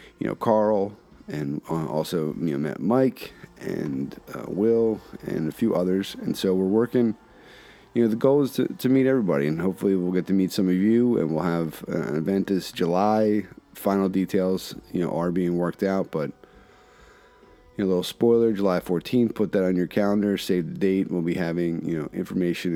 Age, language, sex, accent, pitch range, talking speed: 30-49, English, male, American, 90-110 Hz, 200 wpm